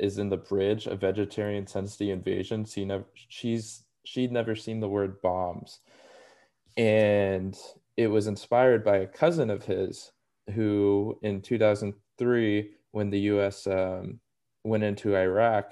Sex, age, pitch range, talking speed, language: male, 20-39, 95-110 Hz, 140 wpm, English